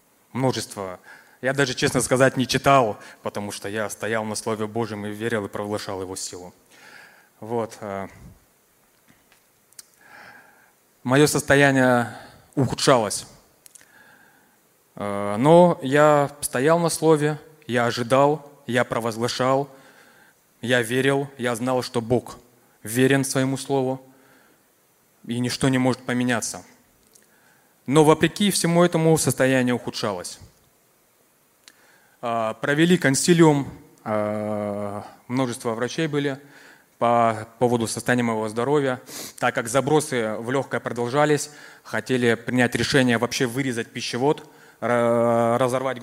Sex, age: male, 20-39